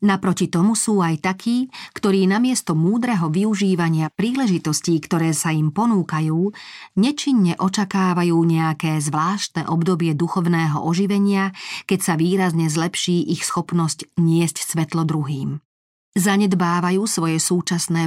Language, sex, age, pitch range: Slovak, female, 40-59, 165-200 Hz